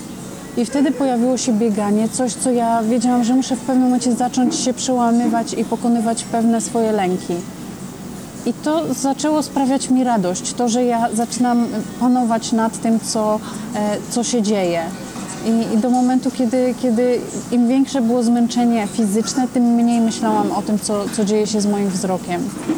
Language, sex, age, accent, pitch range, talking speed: Polish, female, 30-49, native, 210-245 Hz, 165 wpm